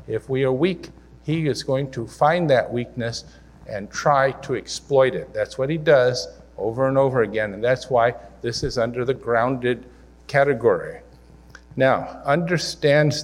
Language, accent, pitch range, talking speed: English, American, 110-145 Hz, 160 wpm